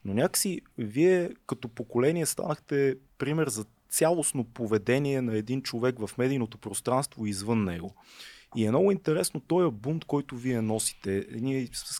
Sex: male